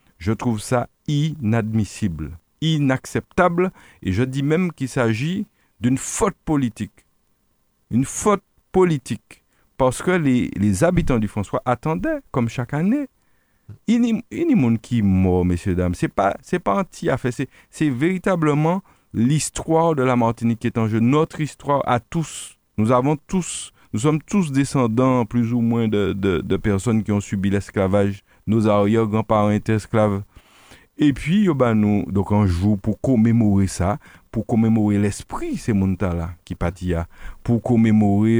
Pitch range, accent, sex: 95-135 Hz, French, male